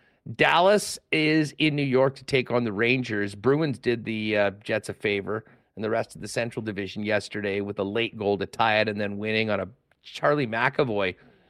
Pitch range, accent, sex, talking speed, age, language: 110-145 Hz, American, male, 205 wpm, 40-59, English